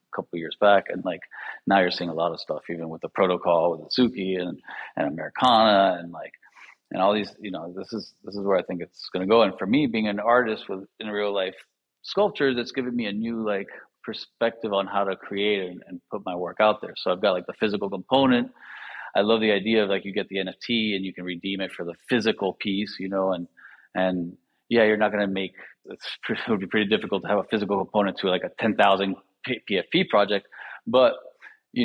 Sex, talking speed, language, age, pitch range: male, 235 wpm, English, 30-49, 90-105 Hz